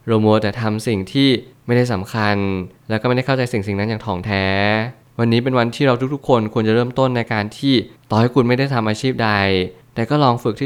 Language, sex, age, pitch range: Thai, male, 20-39, 100-125 Hz